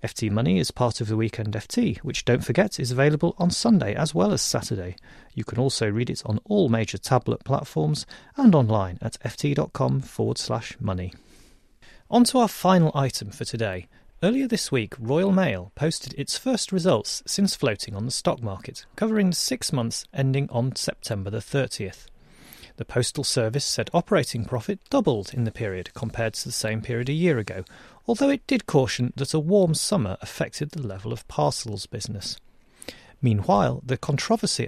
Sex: male